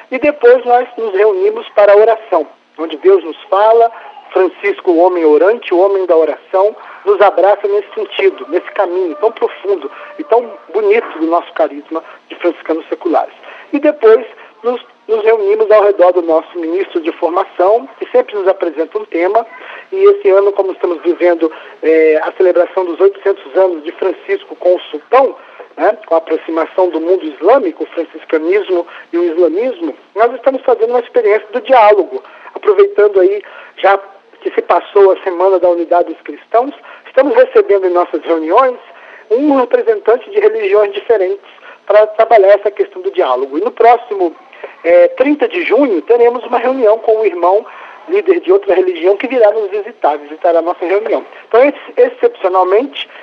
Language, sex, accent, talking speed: Portuguese, male, Brazilian, 165 wpm